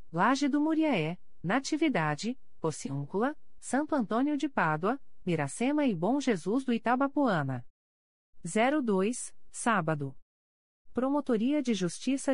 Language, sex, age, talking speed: Portuguese, female, 40-59, 95 wpm